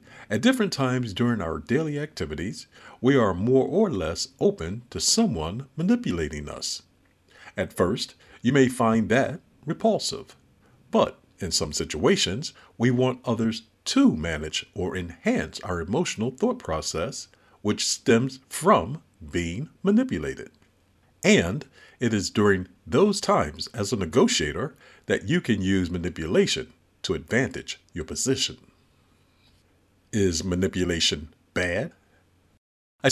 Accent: American